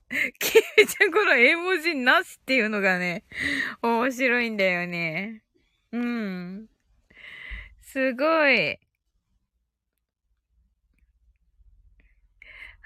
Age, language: 20-39, Japanese